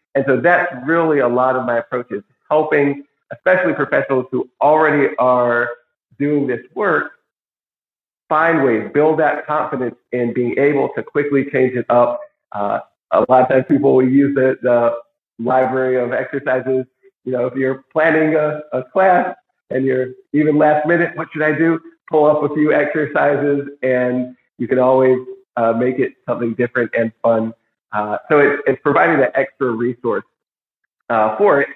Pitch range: 125-155 Hz